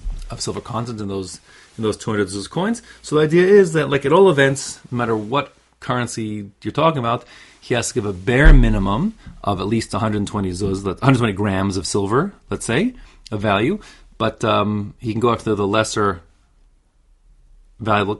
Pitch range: 100-140 Hz